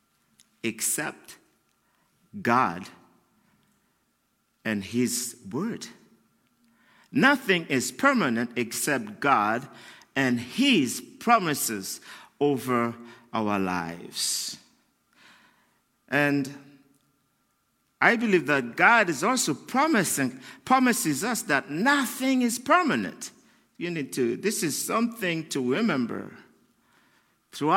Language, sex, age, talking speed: English, male, 50-69, 85 wpm